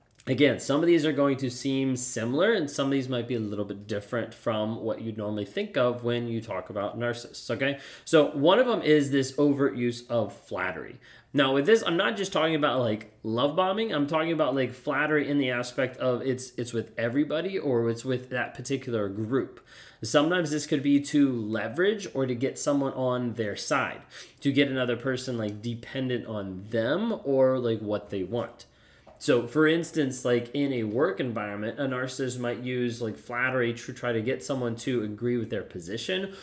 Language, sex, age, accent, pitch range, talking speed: English, male, 20-39, American, 115-135 Hz, 200 wpm